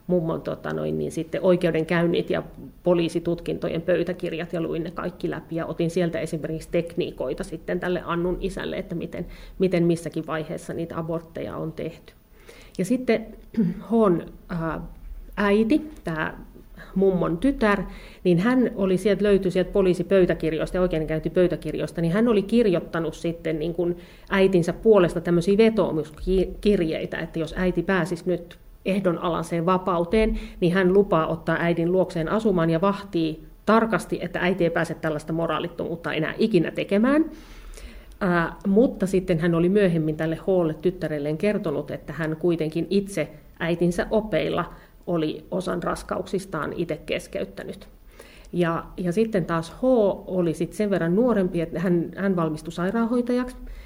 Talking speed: 135 wpm